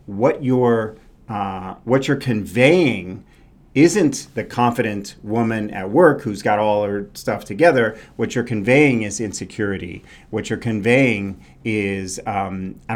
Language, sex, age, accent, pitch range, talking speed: English, male, 40-59, American, 100-120 Hz, 135 wpm